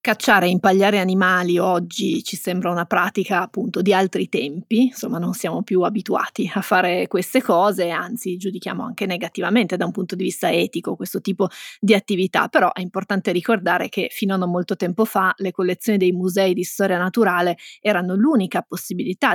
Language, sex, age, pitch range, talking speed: Italian, female, 20-39, 185-215 Hz, 175 wpm